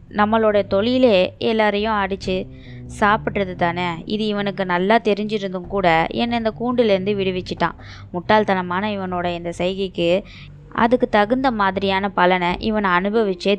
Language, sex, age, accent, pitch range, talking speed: Tamil, female, 20-39, native, 175-210 Hz, 105 wpm